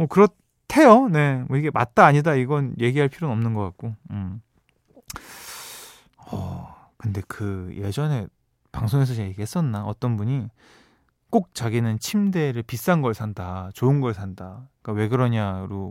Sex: male